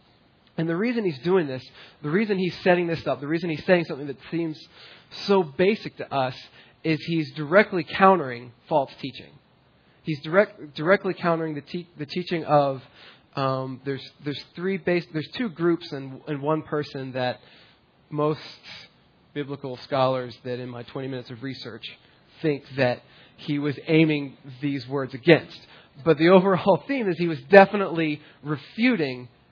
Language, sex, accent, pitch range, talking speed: English, male, American, 140-175 Hz, 155 wpm